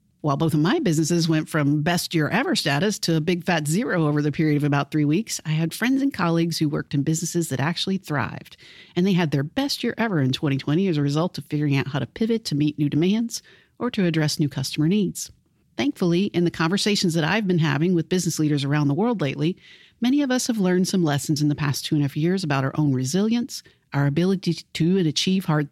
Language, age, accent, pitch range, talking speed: English, 50-69, American, 145-195 Hz, 245 wpm